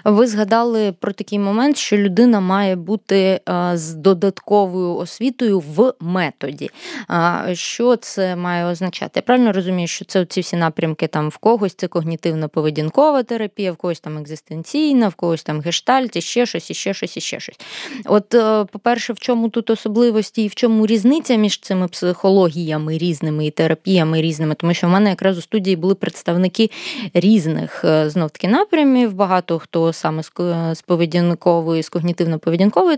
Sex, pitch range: female, 165-215 Hz